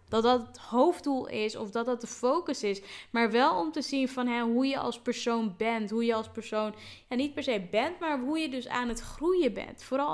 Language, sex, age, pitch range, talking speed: Dutch, female, 10-29, 210-260 Hz, 245 wpm